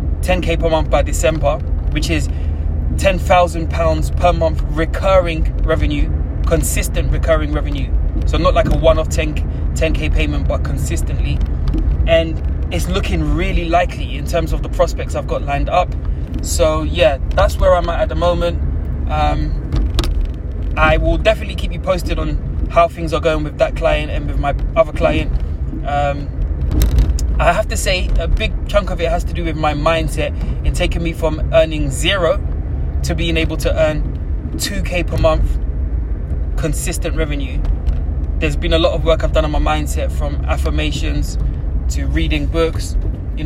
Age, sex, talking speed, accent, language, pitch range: 20-39, male, 165 wpm, British, English, 70-80 Hz